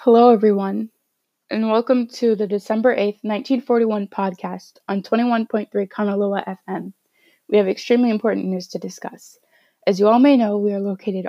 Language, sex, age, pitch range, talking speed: English, female, 20-39, 185-220 Hz, 150 wpm